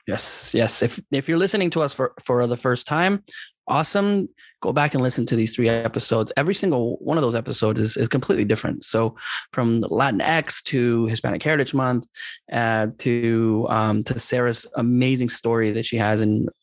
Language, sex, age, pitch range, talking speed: English, male, 20-39, 110-150 Hz, 180 wpm